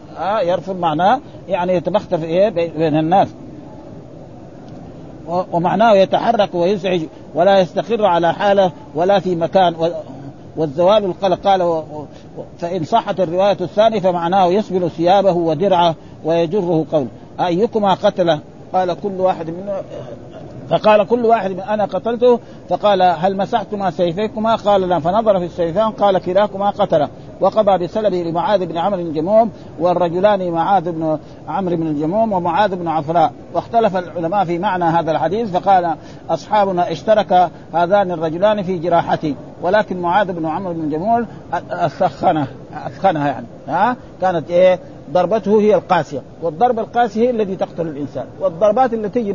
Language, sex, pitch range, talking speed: Arabic, male, 165-205 Hz, 130 wpm